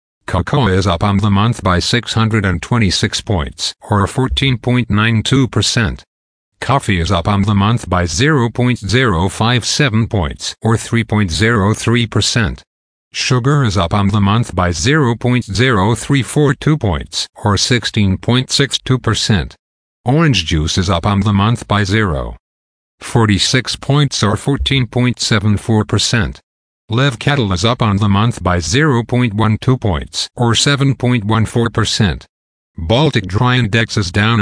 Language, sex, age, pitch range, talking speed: English, male, 50-69, 100-125 Hz, 110 wpm